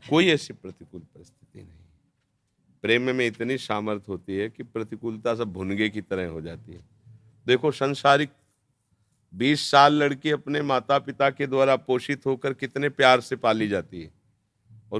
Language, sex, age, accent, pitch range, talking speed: Hindi, male, 50-69, native, 105-130 Hz, 155 wpm